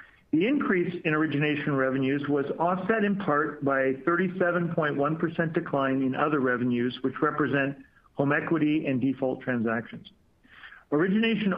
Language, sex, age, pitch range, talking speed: English, male, 50-69, 140-180 Hz, 125 wpm